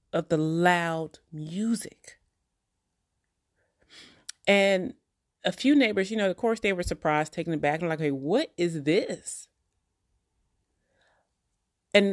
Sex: female